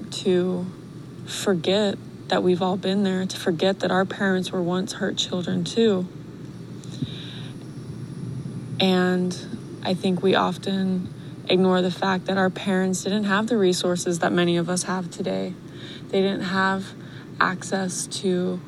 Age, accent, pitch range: 20-39, American, 175-190 Hz